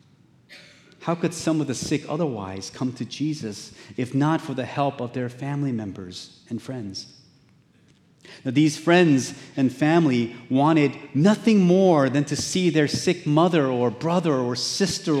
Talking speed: 155 wpm